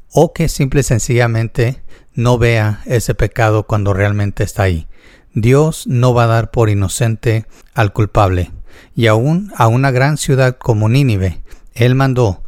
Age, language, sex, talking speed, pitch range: 50-69, Spanish, male, 155 wpm, 105-130 Hz